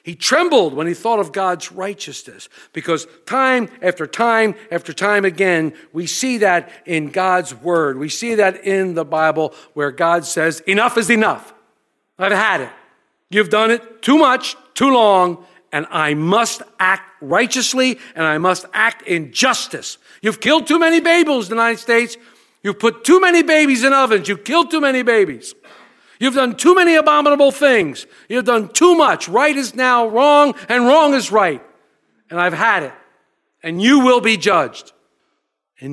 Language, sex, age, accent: English, male, 50-69, American